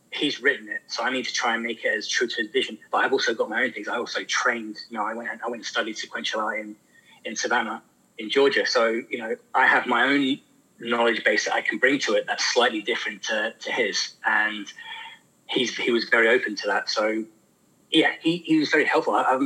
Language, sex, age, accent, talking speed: English, male, 20-39, British, 245 wpm